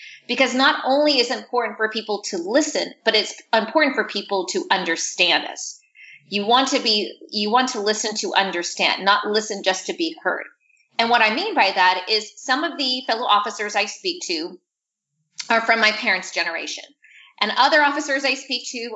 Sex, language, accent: female, English, American